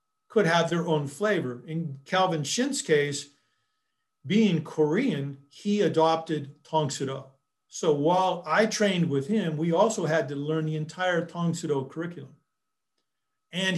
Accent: American